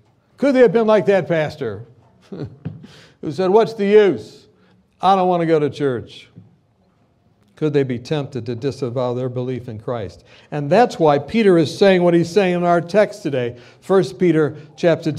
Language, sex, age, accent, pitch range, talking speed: English, male, 60-79, American, 140-190 Hz, 180 wpm